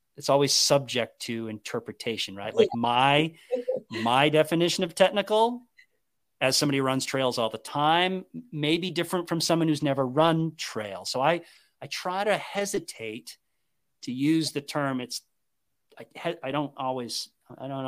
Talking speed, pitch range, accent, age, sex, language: 150 wpm, 120-165 Hz, American, 40-59, male, English